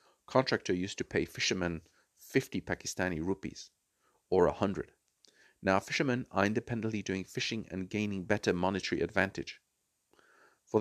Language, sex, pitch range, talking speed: English, male, 90-115 Hz, 120 wpm